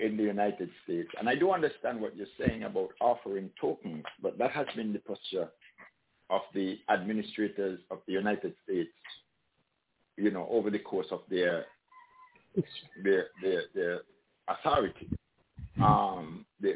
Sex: male